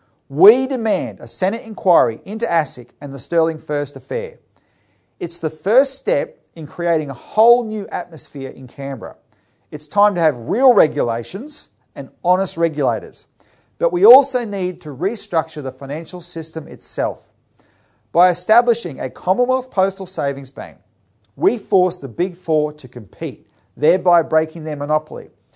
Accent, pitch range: Australian, 125-185 Hz